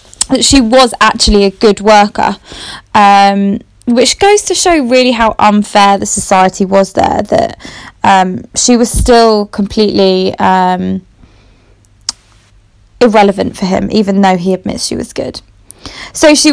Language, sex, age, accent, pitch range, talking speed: English, female, 20-39, British, 195-245 Hz, 135 wpm